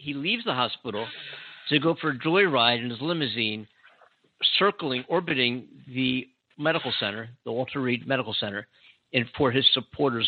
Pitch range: 120-145 Hz